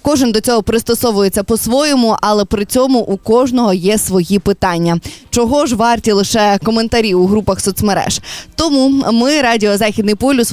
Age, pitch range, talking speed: 20-39, 205-255 Hz, 140 wpm